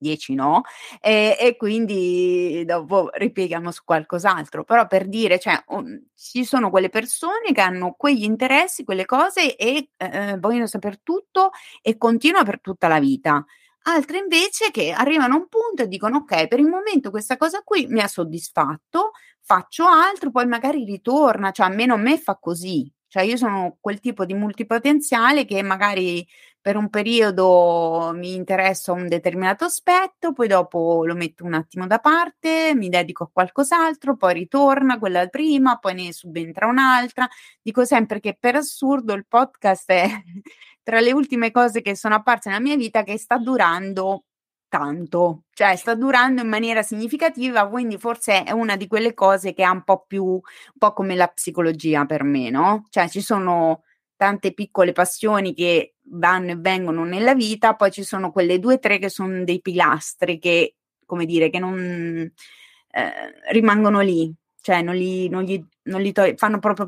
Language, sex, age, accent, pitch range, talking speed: Italian, female, 30-49, native, 180-250 Hz, 170 wpm